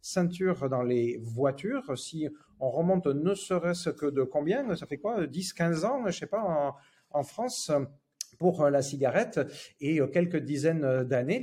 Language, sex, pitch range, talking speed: French, male, 125-180 Hz, 165 wpm